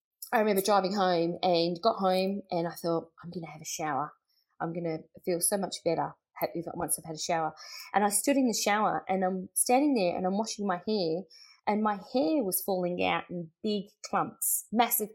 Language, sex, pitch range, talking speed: English, female, 170-230 Hz, 210 wpm